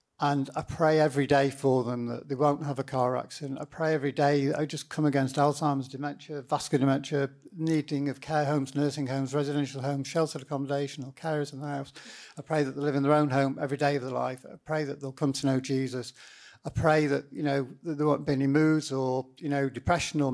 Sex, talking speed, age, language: male, 235 wpm, 50-69, English